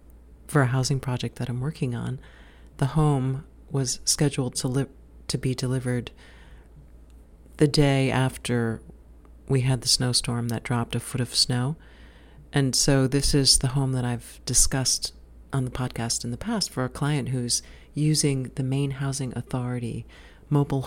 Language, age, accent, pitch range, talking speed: English, 40-59, American, 110-135 Hz, 160 wpm